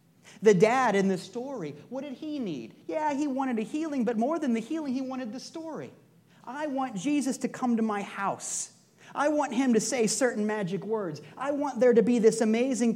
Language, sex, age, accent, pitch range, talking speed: English, male, 30-49, American, 175-250 Hz, 215 wpm